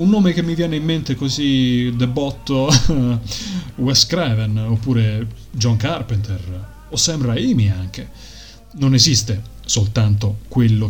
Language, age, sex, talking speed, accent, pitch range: Italian, 30-49, male, 125 wpm, native, 105-130 Hz